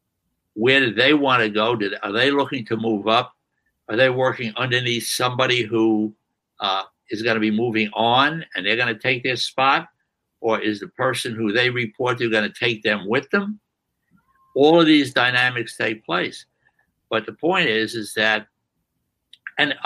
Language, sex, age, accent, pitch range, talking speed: English, male, 60-79, American, 110-140 Hz, 180 wpm